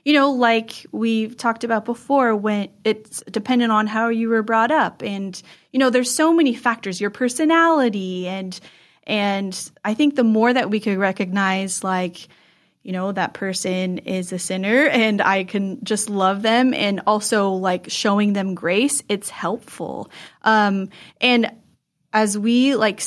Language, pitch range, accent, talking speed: English, 200-240 Hz, American, 160 wpm